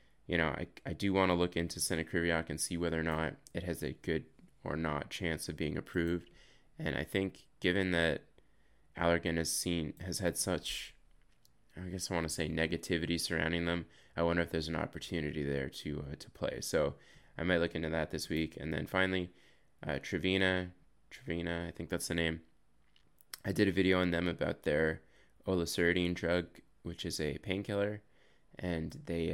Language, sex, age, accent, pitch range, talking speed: English, male, 20-39, American, 80-90 Hz, 185 wpm